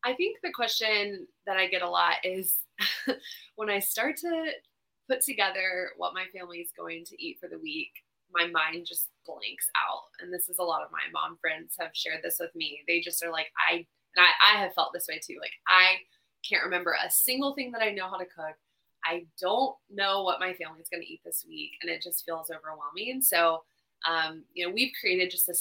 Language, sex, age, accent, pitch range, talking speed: English, female, 20-39, American, 170-220 Hz, 225 wpm